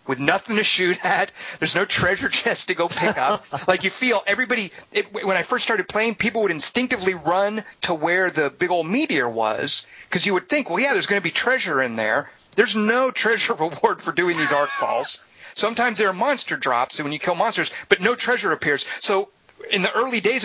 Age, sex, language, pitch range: 40-59, male, English, 155-210 Hz